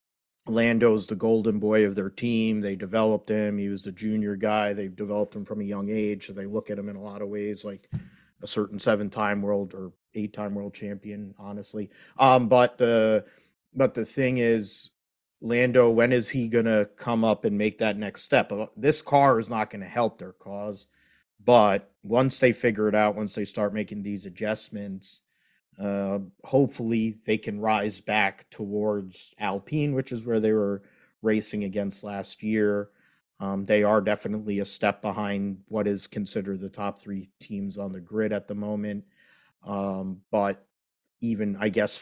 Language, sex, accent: English, male, American